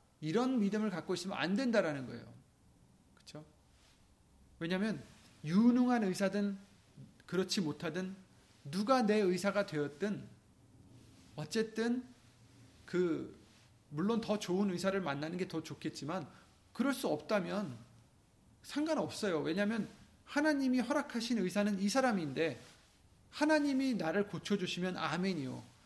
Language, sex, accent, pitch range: Korean, male, native, 130-210 Hz